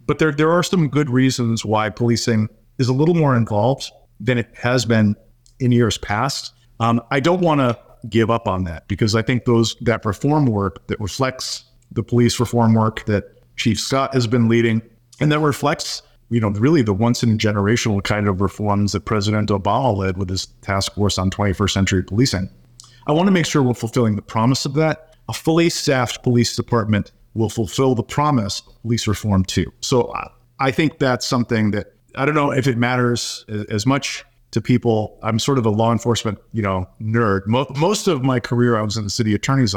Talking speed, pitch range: 205 wpm, 105-130 Hz